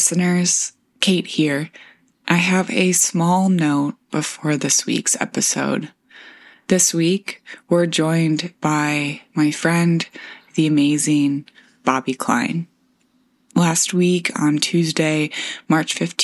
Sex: female